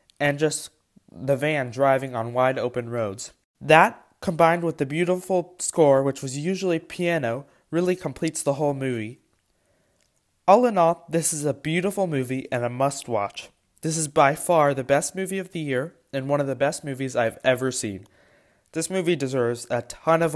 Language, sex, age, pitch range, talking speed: English, male, 20-39, 130-170 Hz, 175 wpm